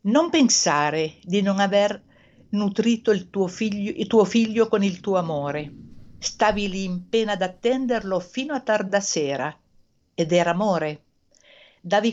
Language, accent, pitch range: Italian, native, 170-235 Hz